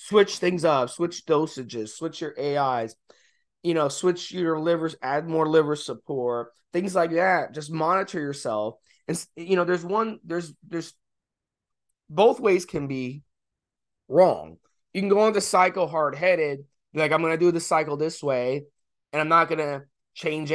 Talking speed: 170 wpm